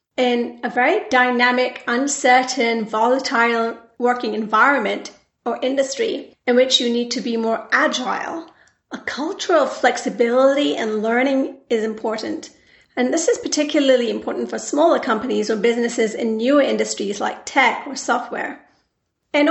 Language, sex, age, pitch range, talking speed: English, female, 40-59, 235-285 Hz, 135 wpm